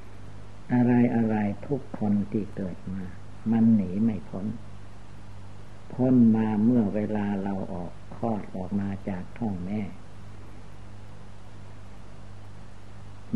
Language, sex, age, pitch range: Thai, male, 60-79, 95-110 Hz